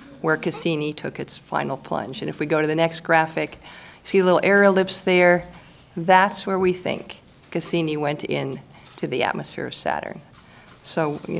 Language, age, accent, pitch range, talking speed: English, 50-69, American, 145-180 Hz, 175 wpm